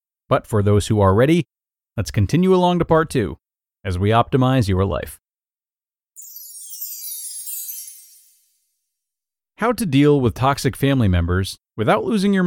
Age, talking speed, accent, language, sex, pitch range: 30-49, 130 wpm, American, English, male, 100-145 Hz